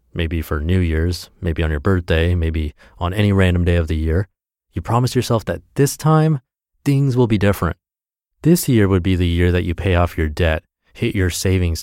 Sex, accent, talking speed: male, American, 210 wpm